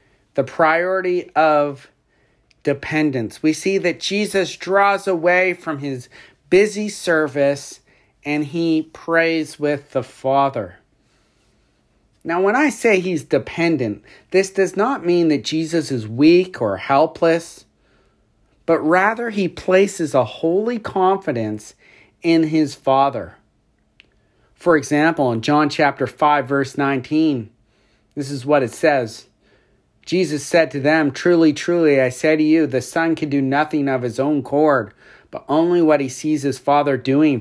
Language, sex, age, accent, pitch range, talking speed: English, male, 40-59, American, 135-165 Hz, 140 wpm